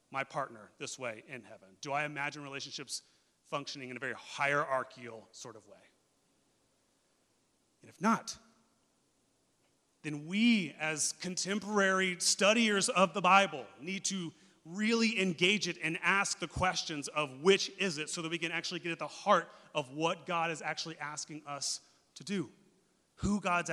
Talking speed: 155 wpm